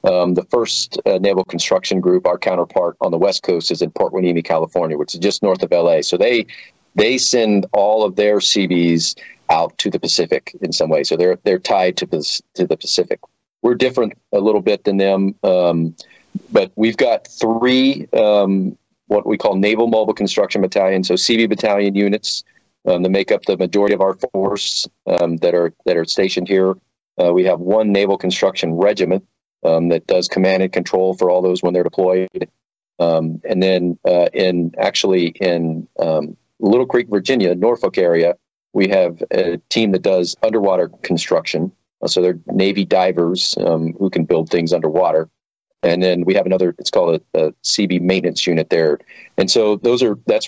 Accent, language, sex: American, English, male